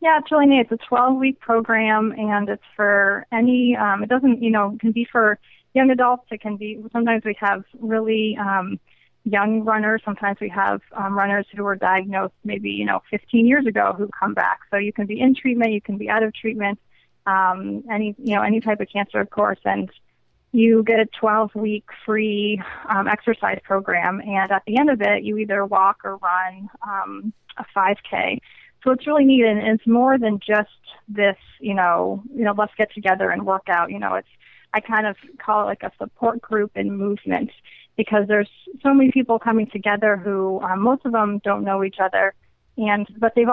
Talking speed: 205 wpm